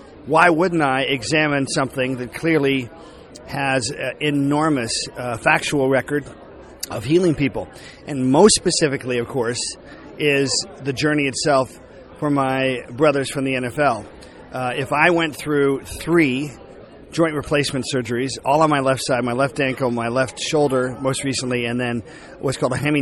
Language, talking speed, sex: English, 155 wpm, male